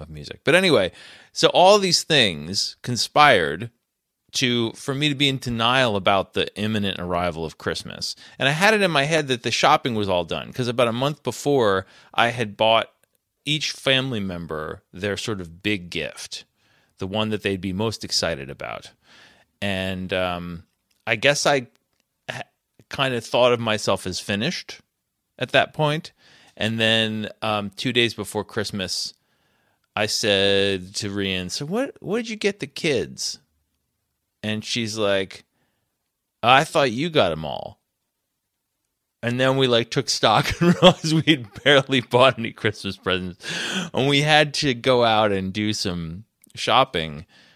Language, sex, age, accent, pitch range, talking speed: English, male, 30-49, American, 95-130 Hz, 160 wpm